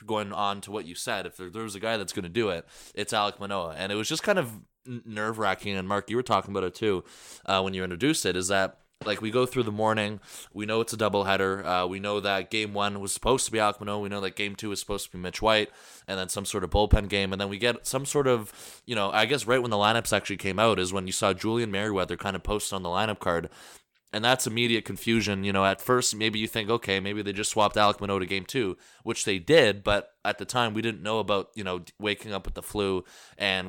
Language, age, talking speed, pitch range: English, 20-39, 275 wpm, 95-110 Hz